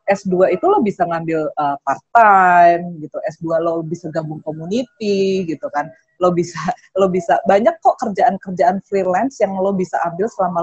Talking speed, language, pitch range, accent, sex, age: 165 wpm, English, 165-210 Hz, Indonesian, female, 20-39